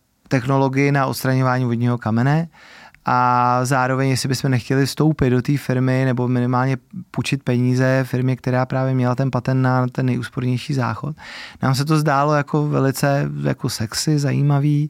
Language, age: Czech, 30-49